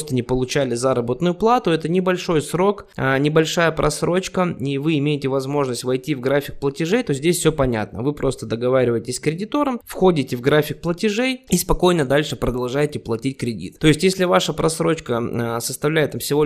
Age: 20-39